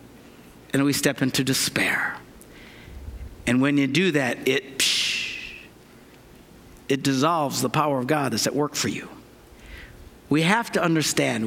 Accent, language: American, English